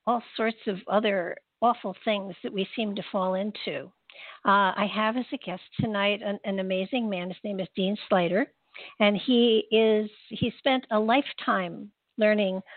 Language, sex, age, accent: English, female, 60-79, American